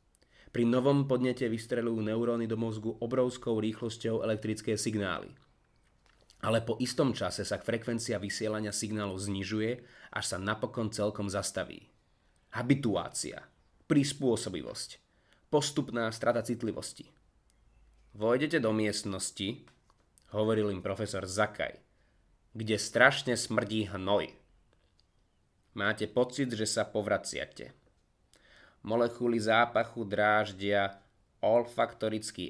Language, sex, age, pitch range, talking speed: Slovak, male, 30-49, 105-120 Hz, 95 wpm